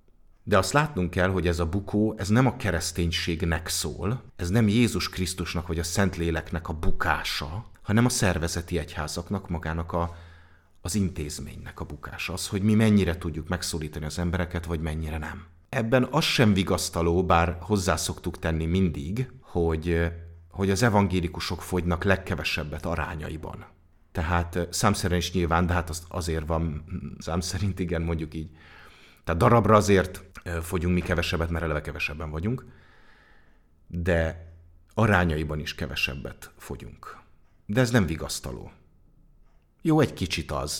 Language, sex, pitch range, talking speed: English, male, 85-95 Hz, 140 wpm